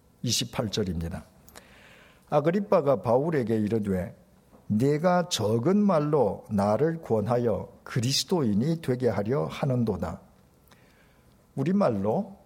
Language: Korean